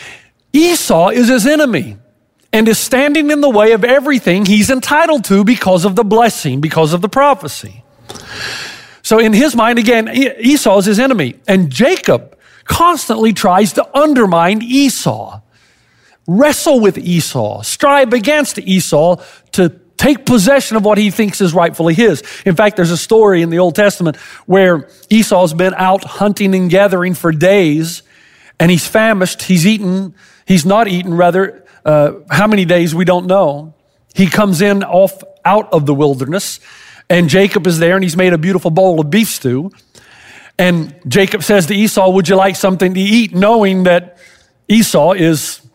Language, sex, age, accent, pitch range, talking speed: English, male, 40-59, American, 175-220 Hz, 165 wpm